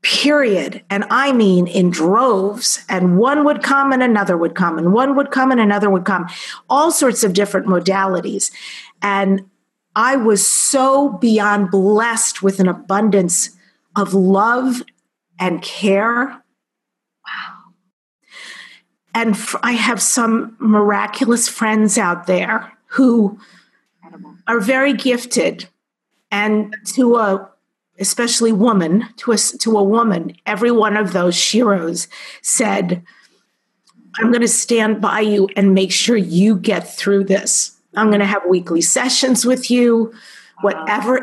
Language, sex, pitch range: English, female, 195-235 Hz